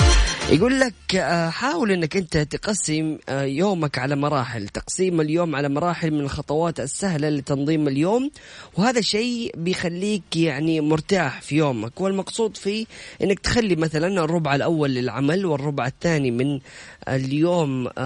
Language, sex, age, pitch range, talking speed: Arabic, female, 20-39, 135-170 Hz, 125 wpm